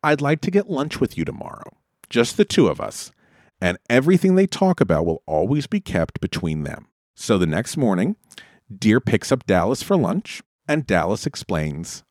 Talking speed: 185 wpm